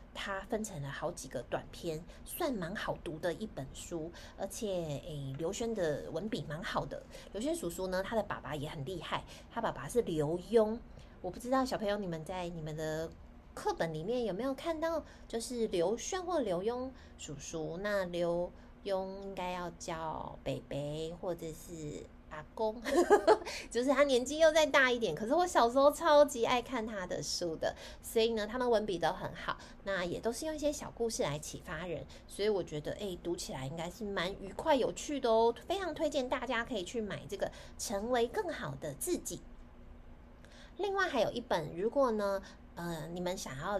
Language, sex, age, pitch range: Chinese, female, 20-39, 175-265 Hz